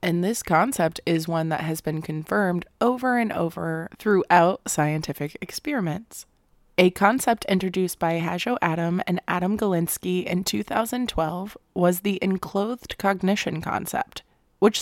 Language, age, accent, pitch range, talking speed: English, 20-39, American, 165-205 Hz, 130 wpm